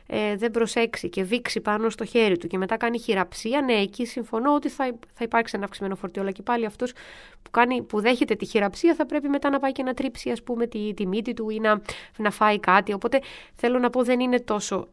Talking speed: 230 wpm